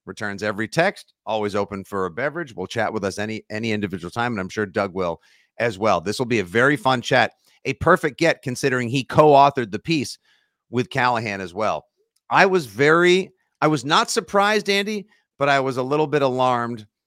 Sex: male